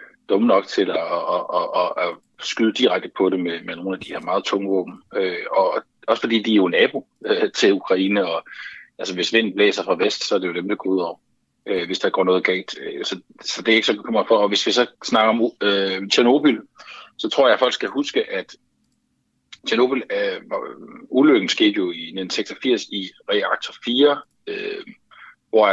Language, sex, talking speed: Danish, male, 210 wpm